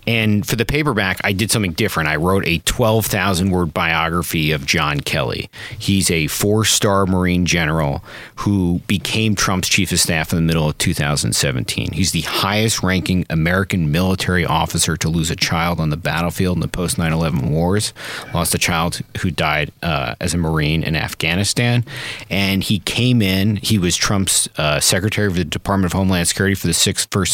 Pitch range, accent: 85-110 Hz, American